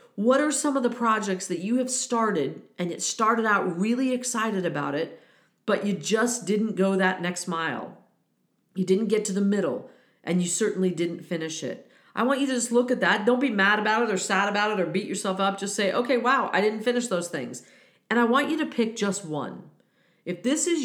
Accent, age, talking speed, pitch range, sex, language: American, 40-59, 225 wpm, 180-230 Hz, female, English